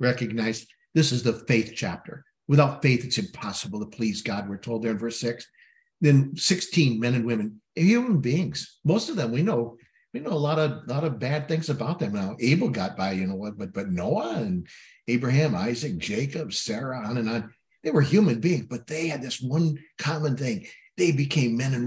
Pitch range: 115-150 Hz